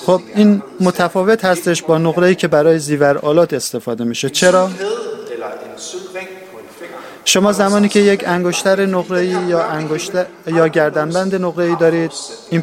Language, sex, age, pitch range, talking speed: Persian, male, 30-49, 155-195 Hz, 130 wpm